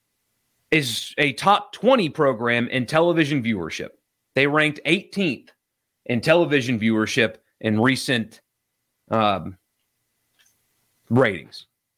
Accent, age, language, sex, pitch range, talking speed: American, 30-49, English, male, 115-160 Hz, 90 wpm